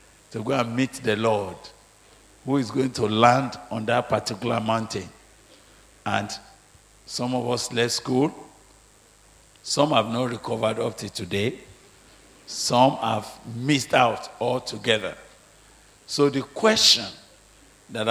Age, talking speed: 50-69, 125 wpm